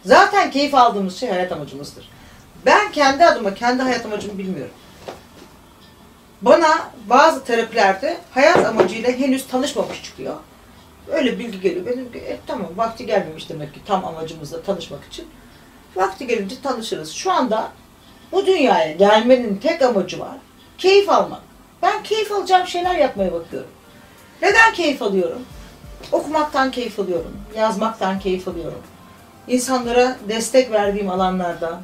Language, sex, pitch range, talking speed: Turkish, female, 200-310 Hz, 125 wpm